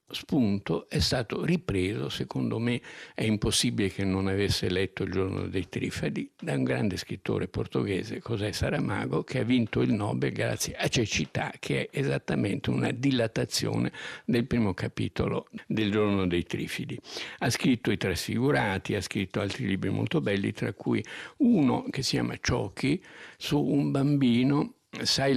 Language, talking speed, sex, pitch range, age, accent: Italian, 150 wpm, male, 95-115 Hz, 60-79, native